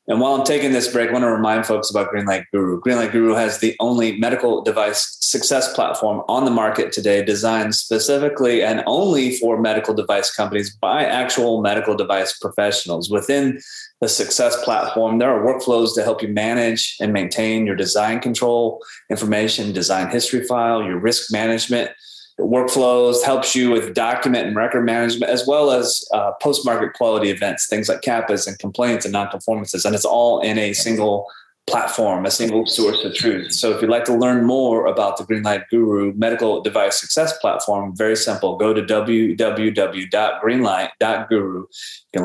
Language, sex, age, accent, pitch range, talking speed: English, male, 20-39, American, 105-120 Hz, 170 wpm